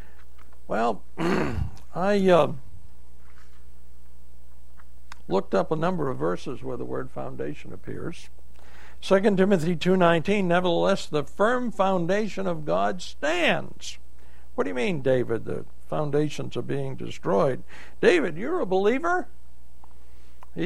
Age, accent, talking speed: 60-79, American, 115 wpm